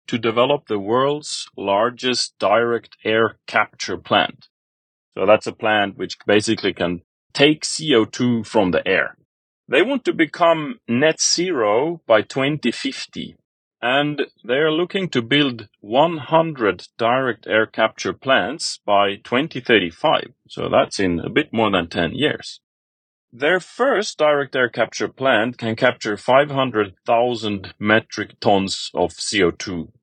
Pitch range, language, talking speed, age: 105-155 Hz, English, 125 wpm, 30-49